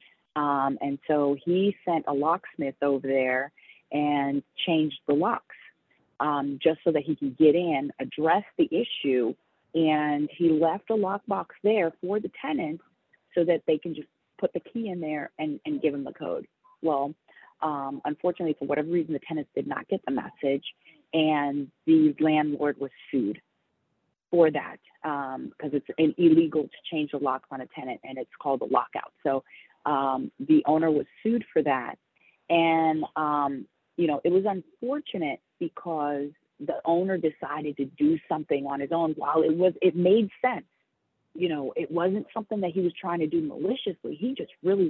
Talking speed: 175 wpm